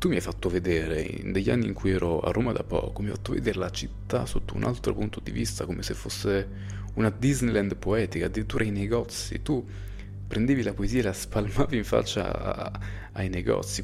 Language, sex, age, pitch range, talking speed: Italian, male, 20-39, 95-105 Hz, 205 wpm